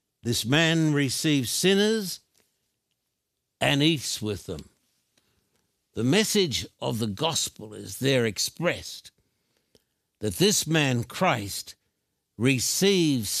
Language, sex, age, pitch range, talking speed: English, male, 60-79, 130-160 Hz, 95 wpm